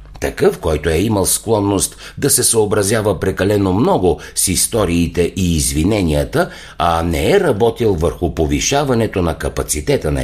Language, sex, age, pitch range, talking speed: Bulgarian, male, 60-79, 80-110 Hz, 135 wpm